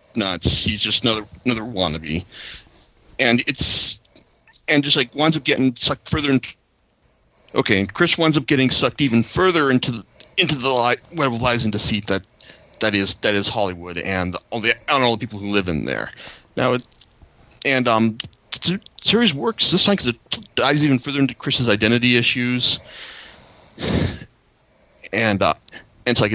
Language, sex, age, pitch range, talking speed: English, male, 40-59, 105-140 Hz, 175 wpm